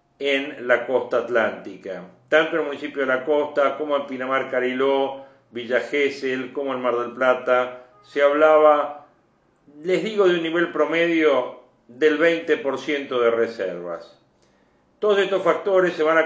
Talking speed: 150 wpm